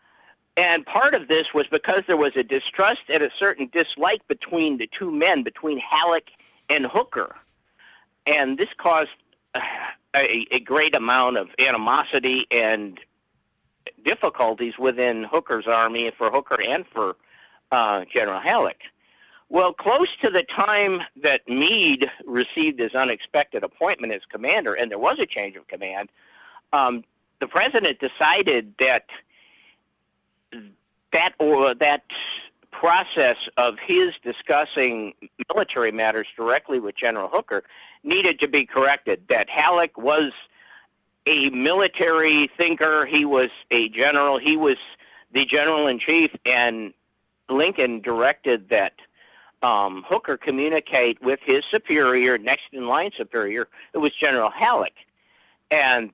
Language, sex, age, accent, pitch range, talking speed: English, male, 50-69, American, 120-170 Hz, 125 wpm